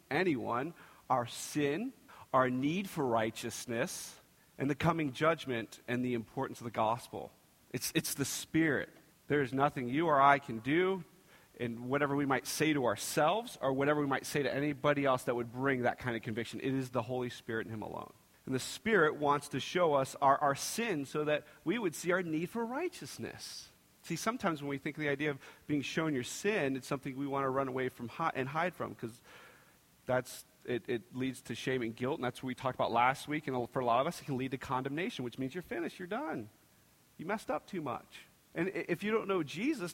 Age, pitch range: 40-59, 130-195 Hz